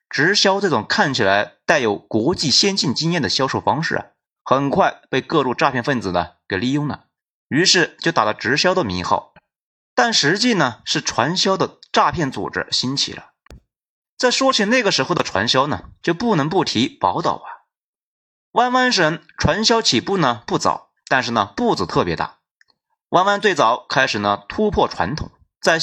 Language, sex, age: Chinese, male, 30-49